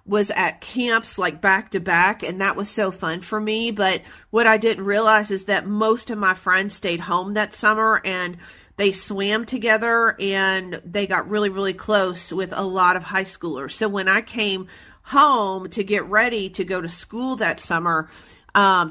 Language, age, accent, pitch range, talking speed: English, 40-59, American, 190-225 Hz, 190 wpm